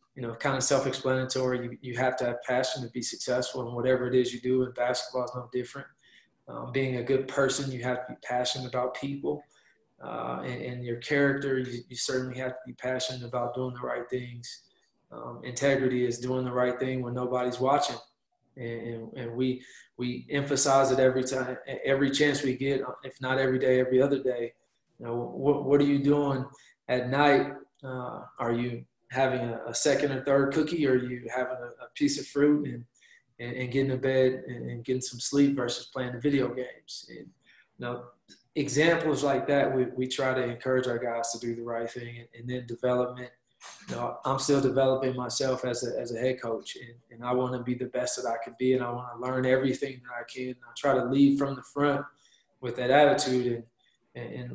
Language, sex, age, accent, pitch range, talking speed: English, male, 20-39, American, 125-135 Hz, 210 wpm